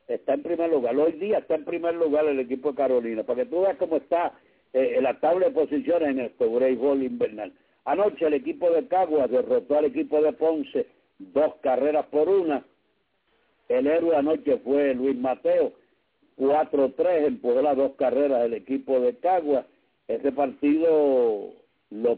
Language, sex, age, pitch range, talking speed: English, male, 60-79, 130-185 Hz, 170 wpm